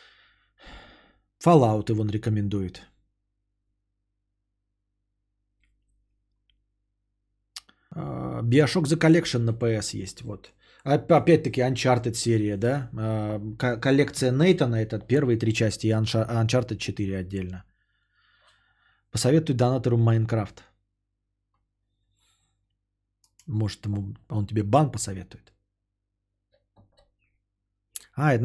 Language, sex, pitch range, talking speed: Bulgarian, male, 100-145 Hz, 70 wpm